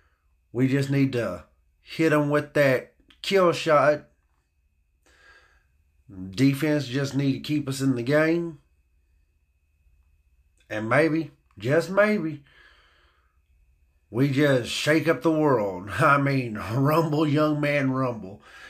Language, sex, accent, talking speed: English, male, American, 110 wpm